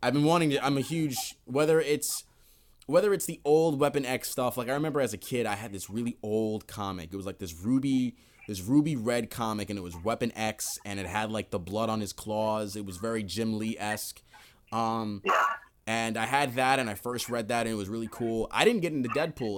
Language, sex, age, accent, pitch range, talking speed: English, male, 20-39, American, 105-130 Hz, 235 wpm